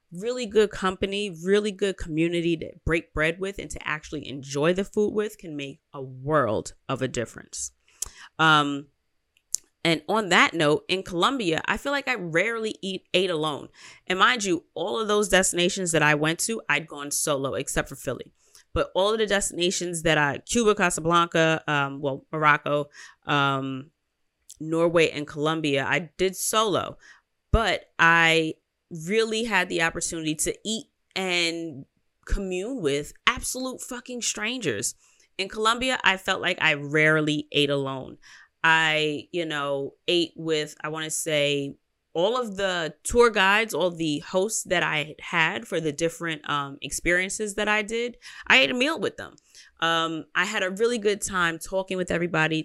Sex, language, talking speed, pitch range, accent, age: female, English, 160 wpm, 150-195 Hz, American, 30-49